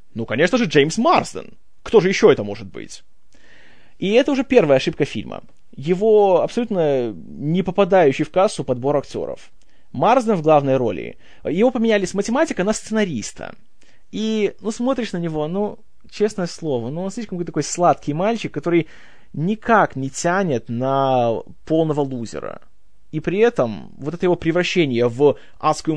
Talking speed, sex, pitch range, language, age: 150 wpm, male, 135-205 Hz, Russian, 20-39